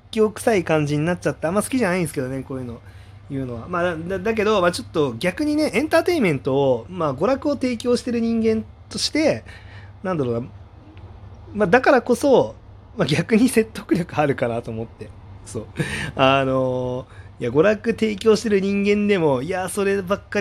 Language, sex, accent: Japanese, male, native